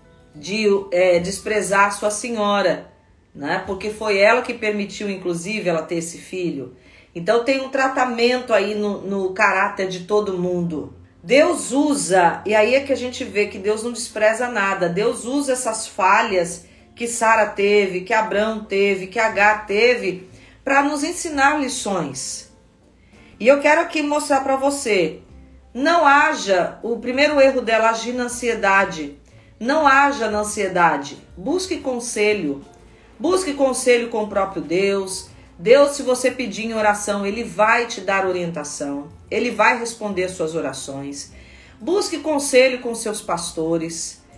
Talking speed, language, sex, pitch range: 145 wpm, Portuguese, female, 185-255 Hz